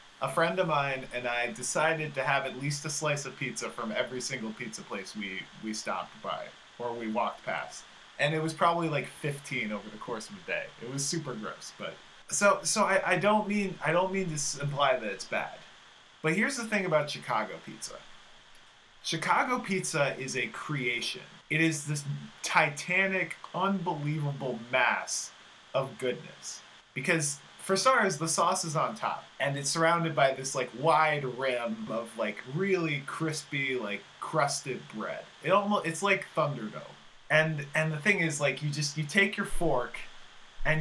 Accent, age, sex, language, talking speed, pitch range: American, 20-39, male, English, 175 wpm, 135-180 Hz